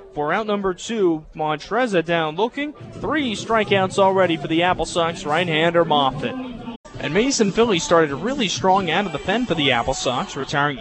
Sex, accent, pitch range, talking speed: male, American, 140-175 Hz, 180 wpm